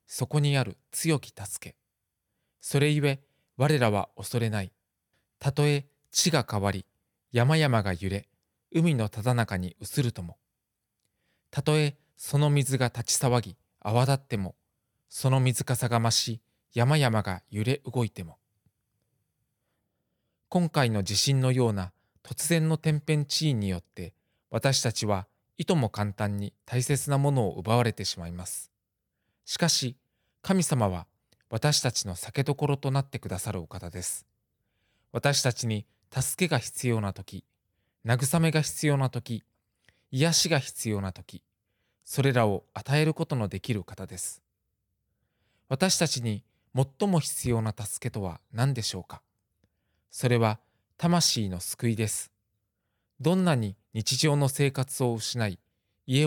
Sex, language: male, Japanese